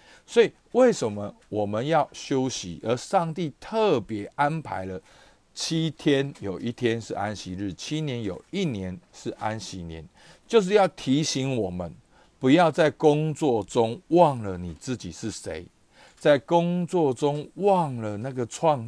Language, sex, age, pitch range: Chinese, male, 50-69, 105-160 Hz